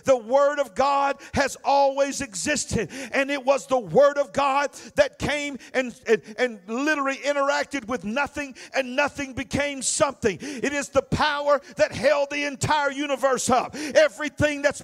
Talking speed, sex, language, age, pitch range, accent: 160 wpm, male, English, 50-69, 265-300 Hz, American